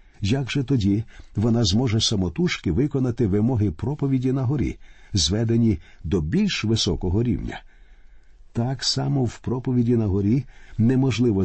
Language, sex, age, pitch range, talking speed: Ukrainian, male, 50-69, 100-130 Hz, 120 wpm